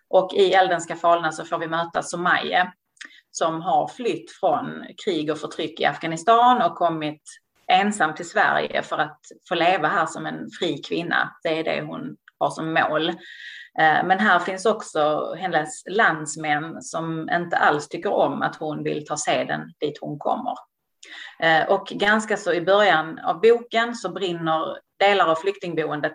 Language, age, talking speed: English, 30-49, 160 wpm